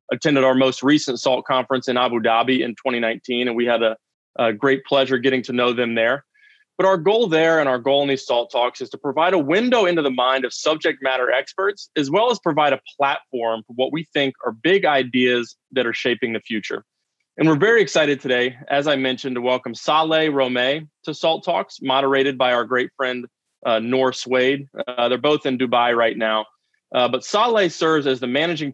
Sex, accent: male, American